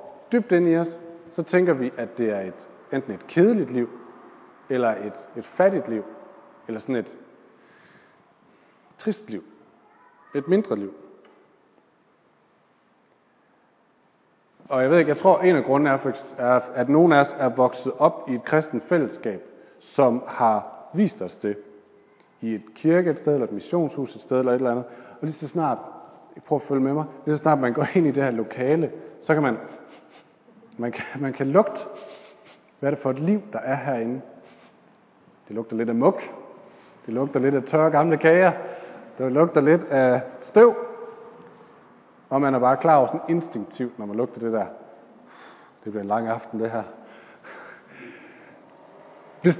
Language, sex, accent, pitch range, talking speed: Danish, male, native, 125-180 Hz, 170 wpm